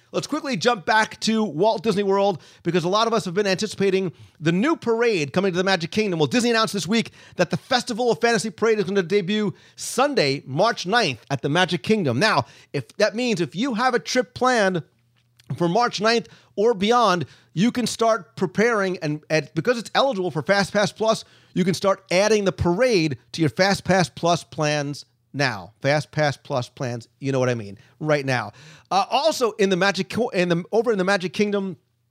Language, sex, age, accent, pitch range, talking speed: English, male, 40-59, American, 140-210 Hz, 205 wpm